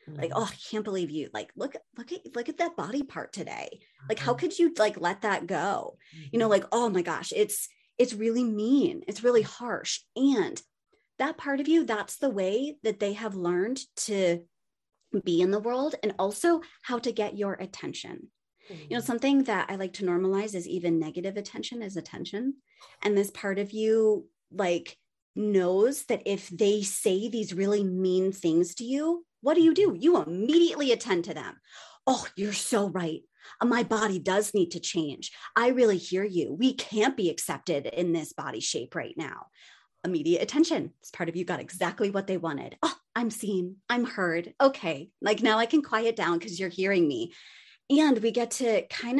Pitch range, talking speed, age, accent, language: 185-260 Hz, 190 wpm, 30-49, American, English